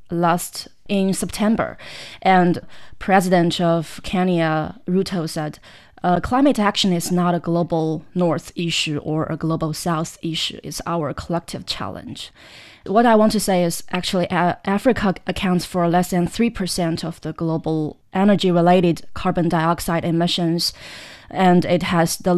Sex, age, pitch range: female, 20-39, 170-190 Hz